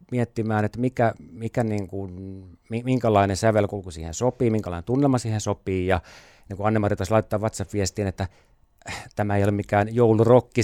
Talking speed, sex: 145 wpm, male